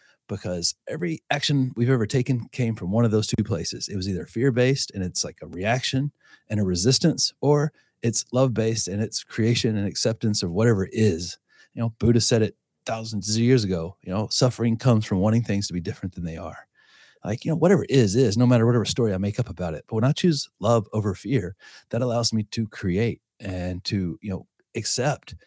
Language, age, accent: English, 30-49, American